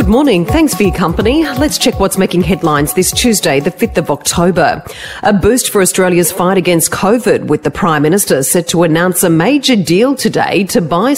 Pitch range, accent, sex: 150-195 Hz, Australian, female